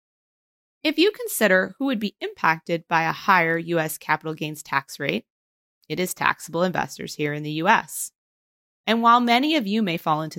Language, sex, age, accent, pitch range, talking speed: English, female, 30-49, American, 165-225 Hz, 180 wpm